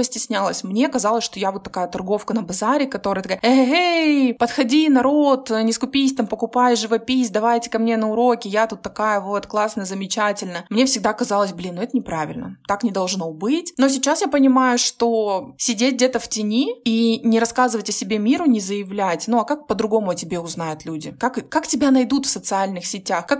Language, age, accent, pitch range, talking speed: Russian, 20-39, native, 195-250 Hz, 190 wpm